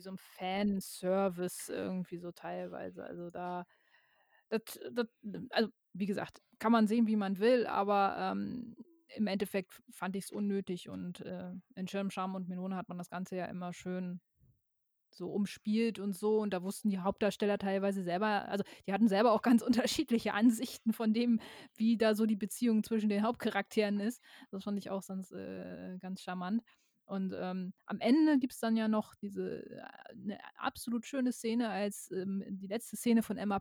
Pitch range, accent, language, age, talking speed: 190-225 Hz, German, German, 20-39, 175 wpm